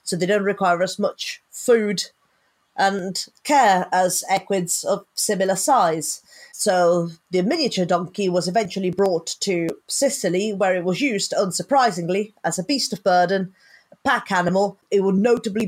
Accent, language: British, English